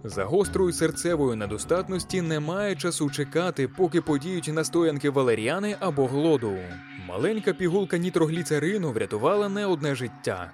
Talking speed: 115 wpm